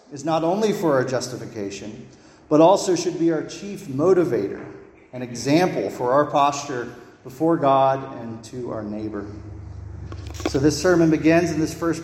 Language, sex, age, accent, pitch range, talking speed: English, male, 40-59, American, 120-160 Hz, 155 wpm